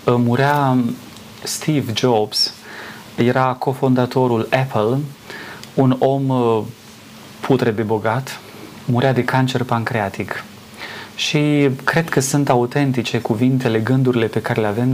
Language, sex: Romanian, male